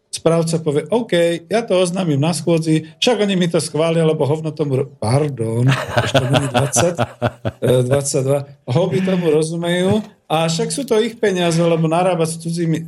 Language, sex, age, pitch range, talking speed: Slovak, male, 50-69, 130-160 Hz, 160 wpm